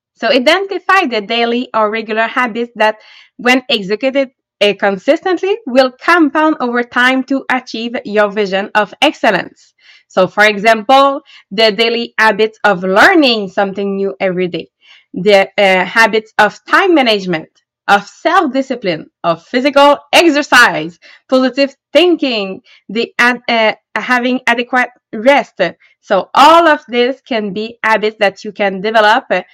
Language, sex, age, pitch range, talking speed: English, female, 20-39, 215-280 Hz, 130 wpm